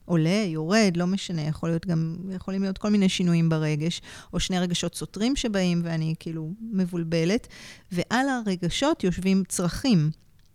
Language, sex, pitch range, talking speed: Hebrew, female, 165-215 Hz, 140 wpm